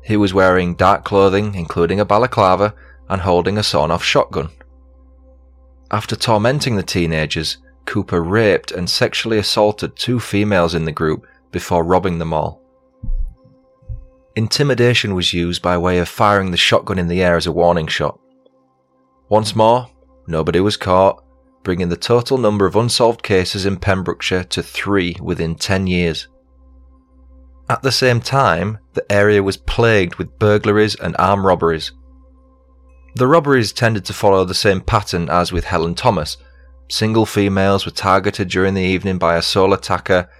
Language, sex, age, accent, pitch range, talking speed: English, male, 30-49, British, 80-105 Hz, 150 wpm